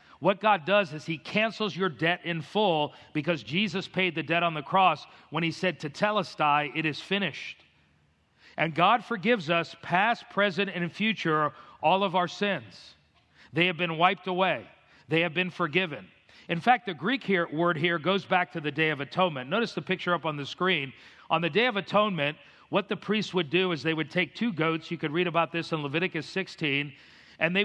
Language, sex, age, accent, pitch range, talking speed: English, male, 40-59, American, 160-195 Hz, 200 wpm